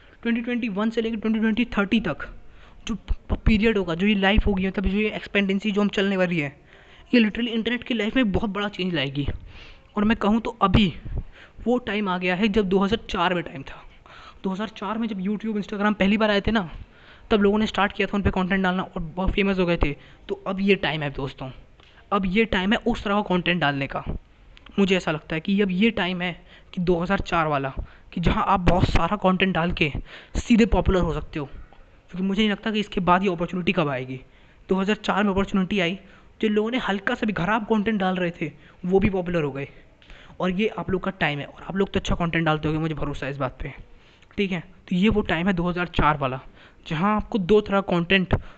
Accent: native